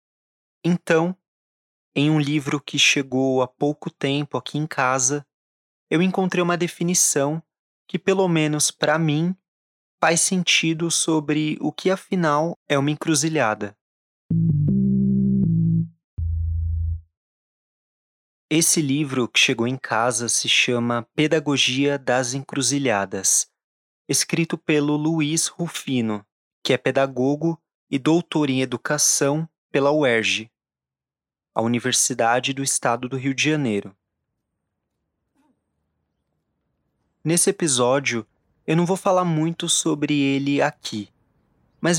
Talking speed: 105 wpm